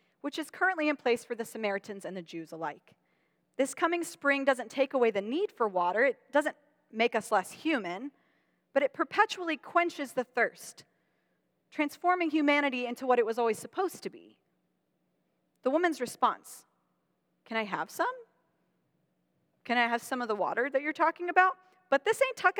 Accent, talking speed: American, 175 wpm